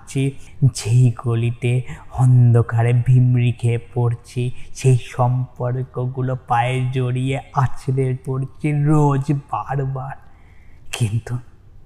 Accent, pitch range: native, 115-135 Hz